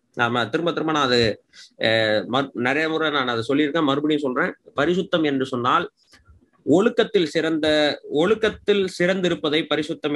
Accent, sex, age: native, male, 30-49